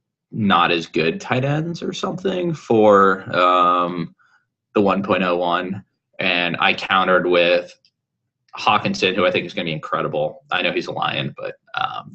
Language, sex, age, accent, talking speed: English, male, 20-39, American, 155 wpm